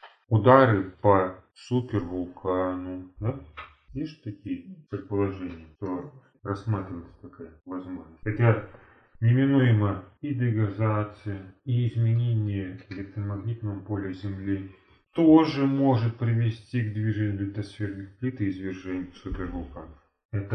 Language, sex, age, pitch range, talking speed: Russian, male, 30-49, 95-120 Hz, 90 wpm